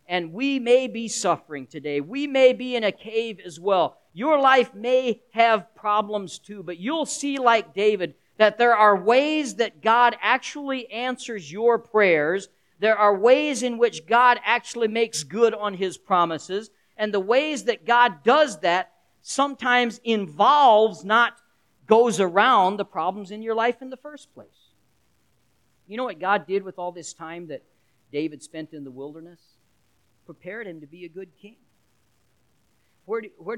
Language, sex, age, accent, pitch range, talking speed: English, male, 50-69, American, 145-230 Hz, 165 wpm